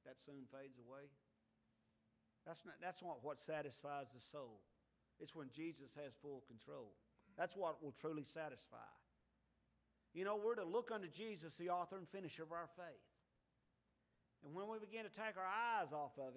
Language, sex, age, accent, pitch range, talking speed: English, male, 50-69, American, 150-210 Hz, 170 wpm